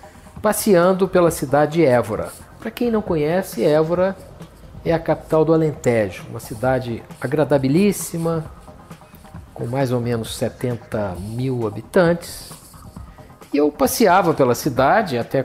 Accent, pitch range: Brazilian, 135-185 Hz